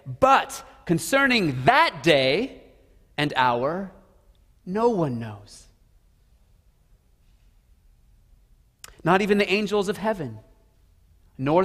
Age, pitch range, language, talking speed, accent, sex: 30-49, 125-210 Hz, English, 80 wpm, American, male